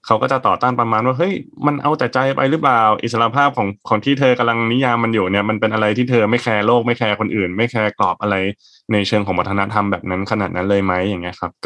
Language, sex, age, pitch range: Thai, male, 20-39, 100-125 Hz